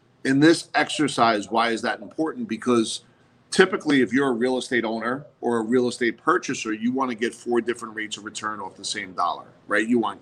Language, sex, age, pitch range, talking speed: English, male, 40-59, 110-130 Hz, 210 wpm